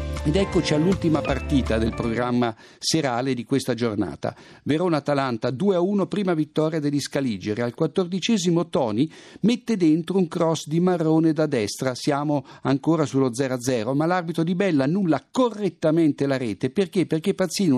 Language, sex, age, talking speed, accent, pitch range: Italian, male, 60-79, 140 wpm, native, 130-175 Hz